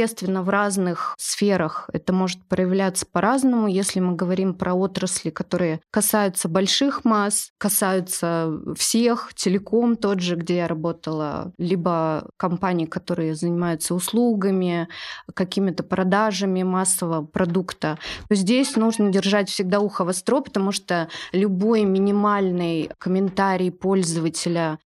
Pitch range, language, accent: 175-205 Hz, Russian, native